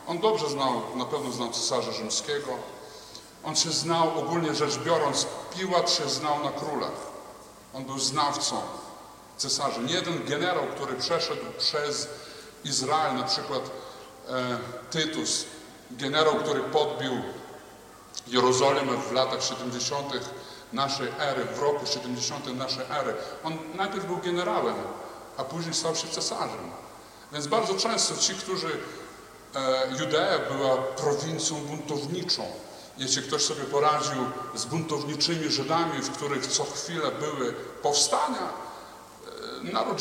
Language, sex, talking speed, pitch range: Polish, male, 120 wpm, 135-175 Hz